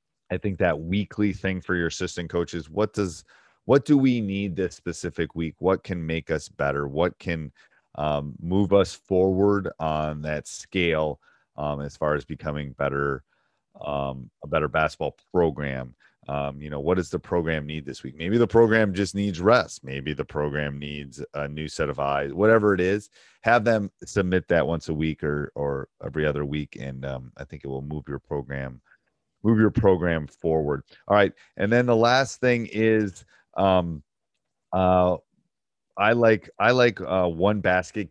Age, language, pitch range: 30-49, English, 75-95 Hz